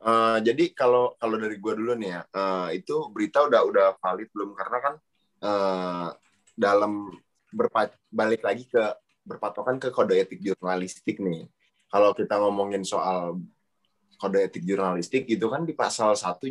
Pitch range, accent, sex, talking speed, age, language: 100-125 Hz, native, male, 155 wpm, 20-39, Indonesian